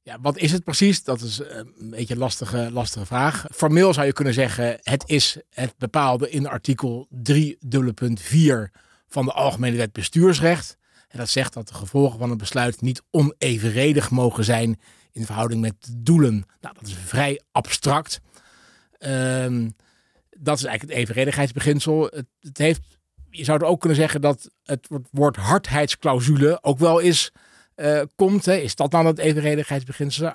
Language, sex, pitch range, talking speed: Dutch, male, 120-150 Hz, 160 wpm